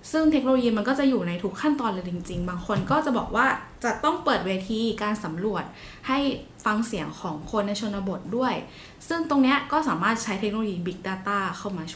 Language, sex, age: Thai, female, 10-29